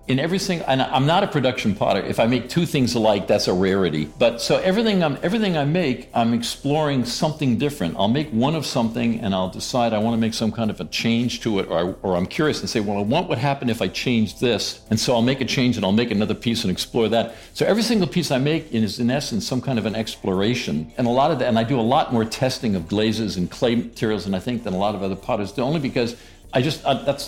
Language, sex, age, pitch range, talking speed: English, male, 60-79, 105-135 Hz, 270 wpm